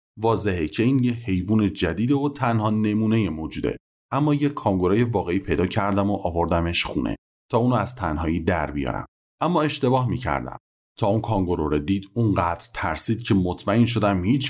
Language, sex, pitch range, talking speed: Persian, male, 90-125 Hz, 160 wpm